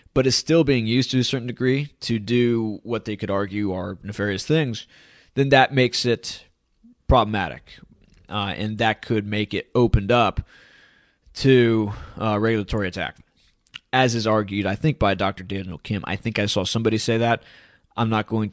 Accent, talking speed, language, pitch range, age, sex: American, 175 wpm, English, 105-130 Hz, 20-39, male